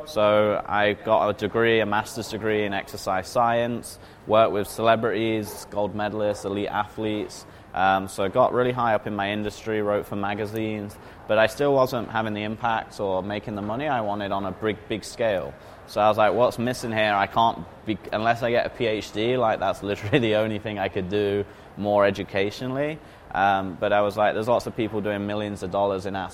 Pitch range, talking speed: 100-115 Hz, 205 wpm